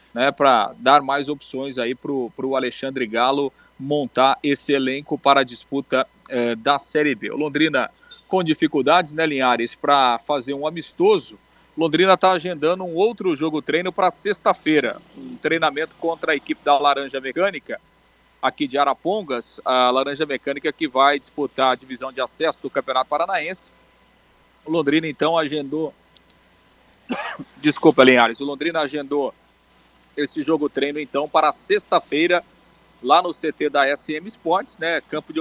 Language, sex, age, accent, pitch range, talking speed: Portuguese, male, 40-59, Brazilian, 135-165 Hz, 145 wpm